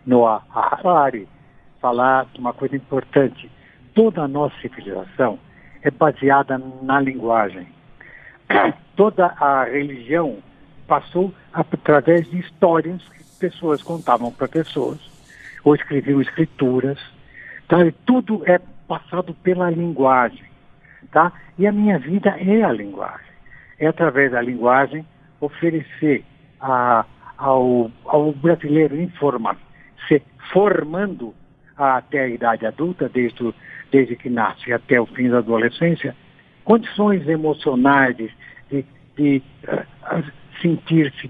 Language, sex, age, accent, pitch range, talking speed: Portuguese, male, 60-79, Brazilian, 130-170 Hz, 100 wpm